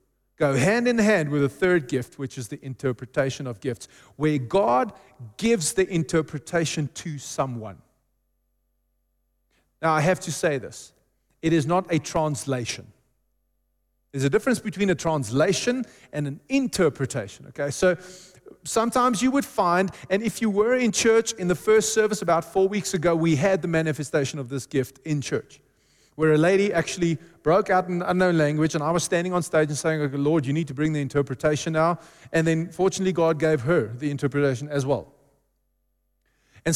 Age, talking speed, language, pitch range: 30-49, 175 wpm, English, 135-185 Hz